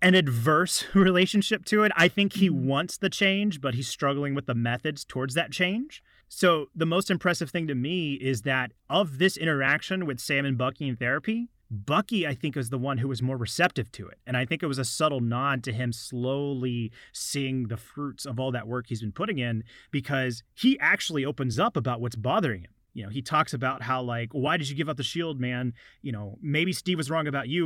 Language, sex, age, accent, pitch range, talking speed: English, male, 30-49, American, 120-160 Hz, 225 wpm